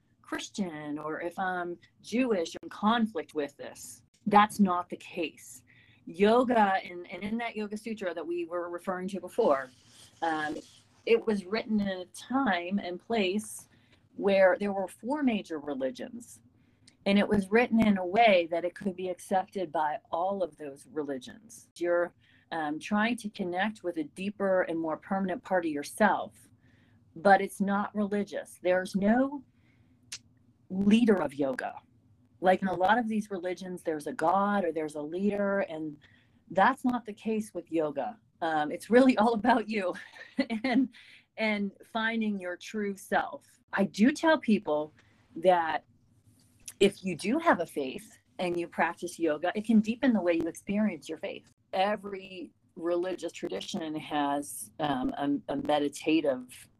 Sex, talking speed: female, 155 wpm